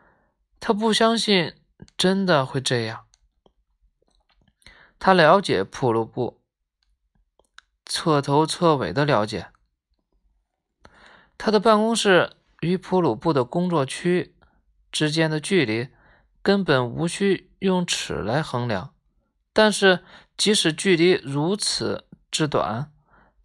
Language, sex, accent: Chinese, male, native